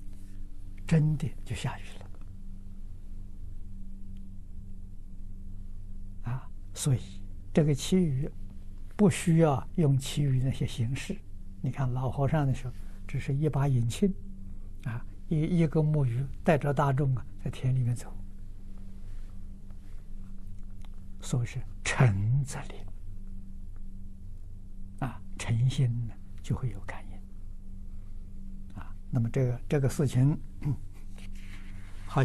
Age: 60-79